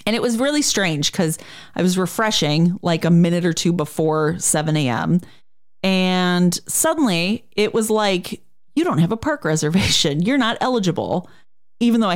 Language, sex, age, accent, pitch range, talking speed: English, female, 30-49, American, 165-230 Hz, 165 wpm